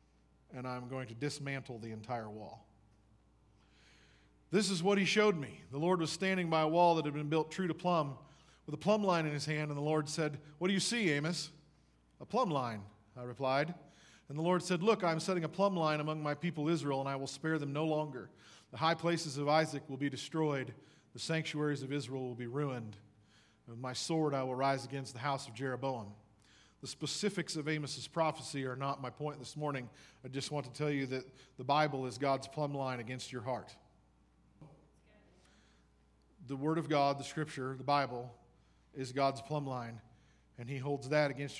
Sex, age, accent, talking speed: male, 40-59, American, 200 wpm